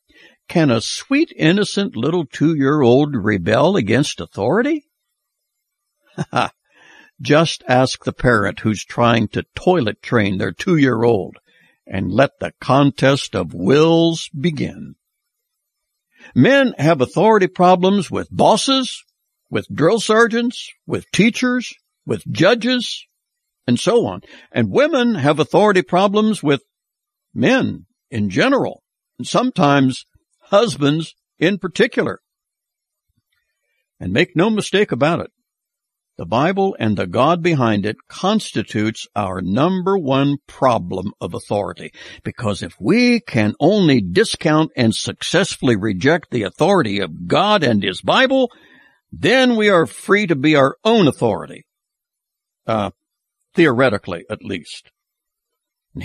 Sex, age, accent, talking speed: male, 60-79, American, 115 wpm